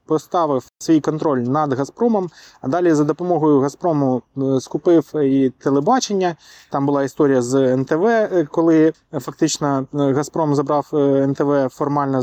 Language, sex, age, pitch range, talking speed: Ukrainian, male, 20-39, 145-175 Hz, 120 wpm